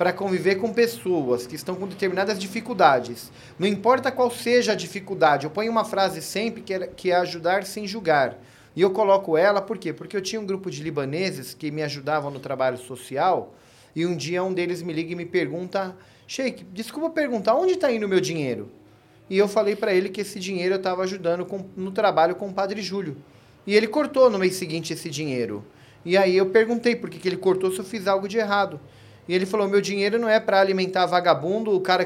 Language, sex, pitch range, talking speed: Portuguese, male, 160-200 Hz, 220 wpm